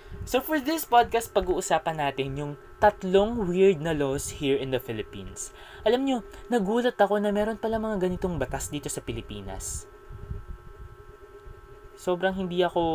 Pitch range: 140-215 Hz